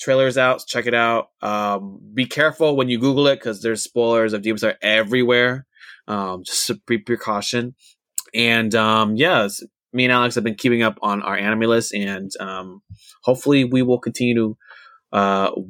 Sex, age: male, 20-39